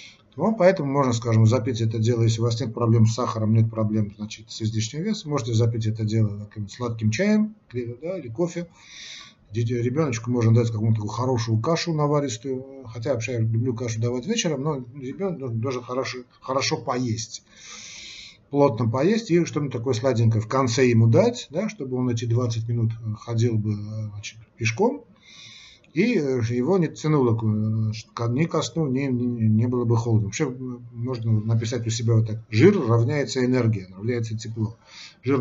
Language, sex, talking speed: Russian, male, 160 wpm